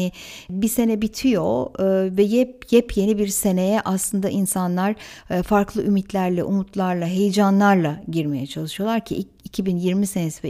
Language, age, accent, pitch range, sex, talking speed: Turkish, 60-79, native, 170-220 Hz, female, 115 wpm